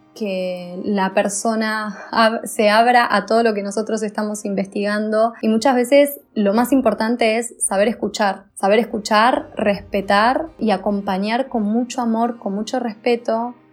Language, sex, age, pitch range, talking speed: Spanish, female, 20-39, 205-245 Hz, 145 wpm